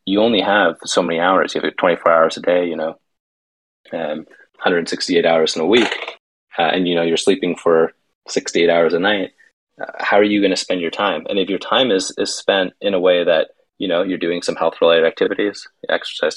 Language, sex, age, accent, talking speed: English, male, 30-49, American, 220 wpm